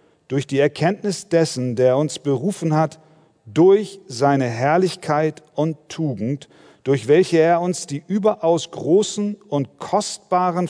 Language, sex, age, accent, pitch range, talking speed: German, male, 40-59, German, 140-180 Hz, 125 wpm